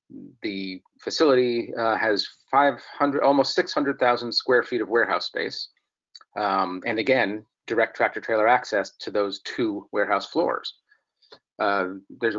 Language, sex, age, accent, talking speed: English, male, 40-59, American, 115 wpm